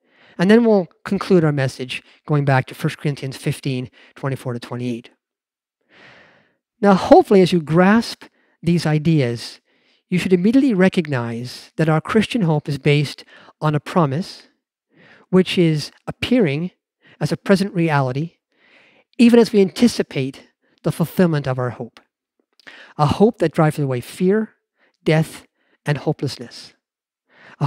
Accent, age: American, 50-69